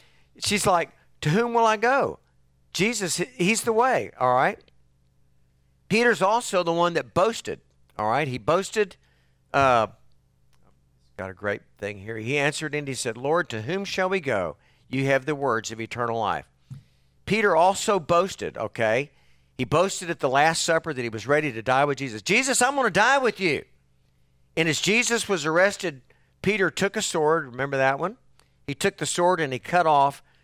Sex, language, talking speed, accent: male, English, 180 wpm, American